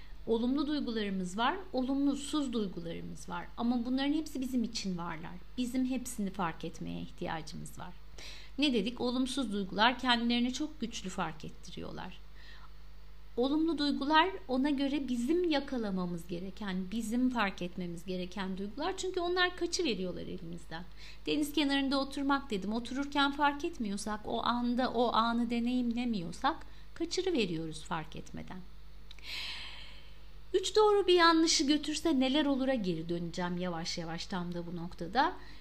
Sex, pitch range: female, 185-275 Hz